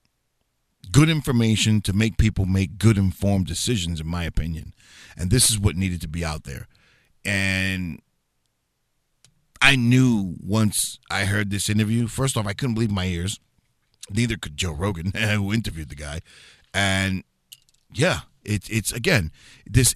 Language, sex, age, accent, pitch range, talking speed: English, male, 50-69, American, 90-115 Hz, 145 wpm